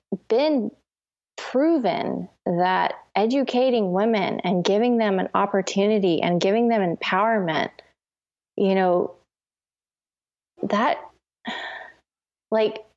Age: 20-39